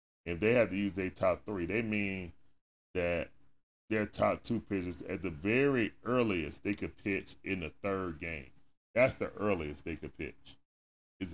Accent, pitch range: American, 80-110 Hz